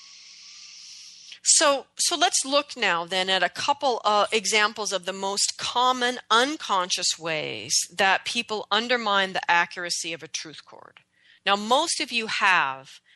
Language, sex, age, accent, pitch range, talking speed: English, female, 40-59, American, 160-195 Hz, 150 wpm